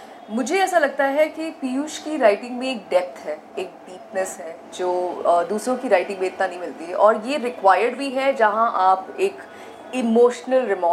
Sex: female